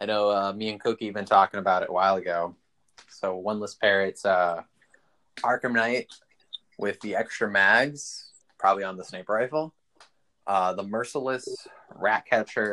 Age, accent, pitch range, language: 20-39, American, 95-115 Hz, English